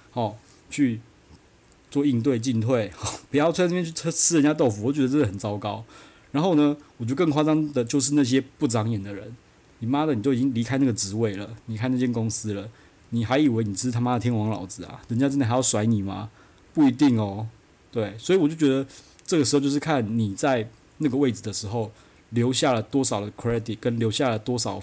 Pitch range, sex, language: 110-135 Hz, male, Chinese